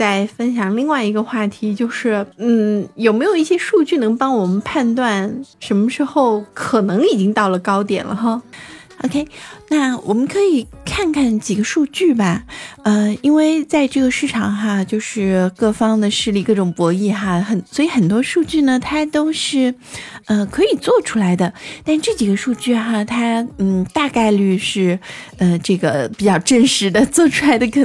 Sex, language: female, Chinese